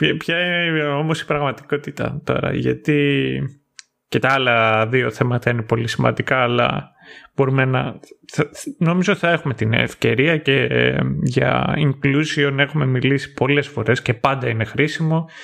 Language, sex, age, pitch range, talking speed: Greek, male, 30-49, 120-155 Hz, 130 wpm